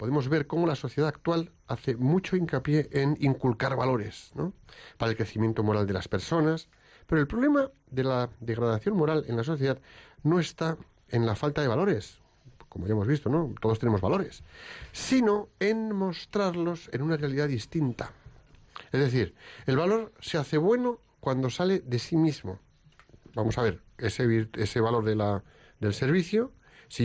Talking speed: 160 wpm